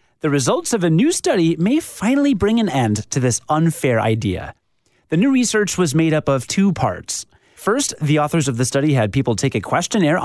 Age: 30-49